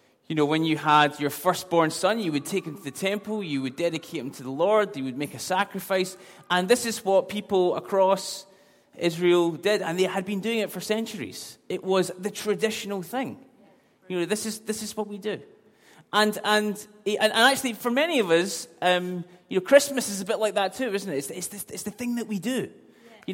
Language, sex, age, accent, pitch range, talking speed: English, male, 20-39, British, 165-210 Hz, 225 wpm